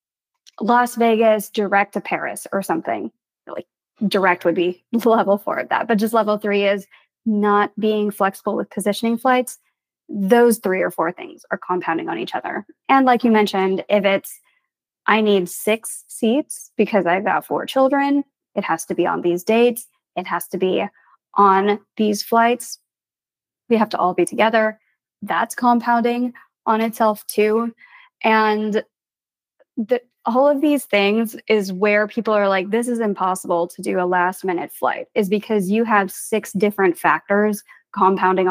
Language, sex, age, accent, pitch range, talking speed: English, female, 20-39, American, 195-235 Hz, 160 wpm